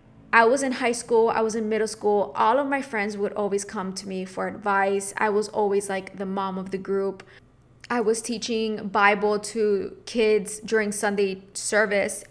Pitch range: 205-235 Hz